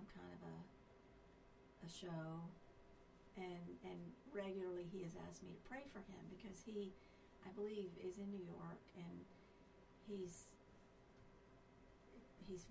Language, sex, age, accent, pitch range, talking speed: English, female, 50-69, American, 175-200 Hz, 125 wpm